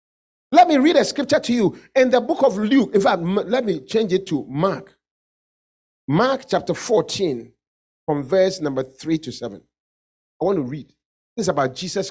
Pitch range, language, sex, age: 145-210 Hz, English, male, 40-59